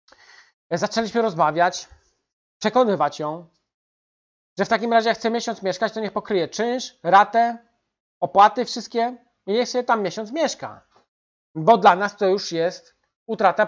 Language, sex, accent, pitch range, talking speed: Polish, male, native, 180-230 Hz, 140 wpm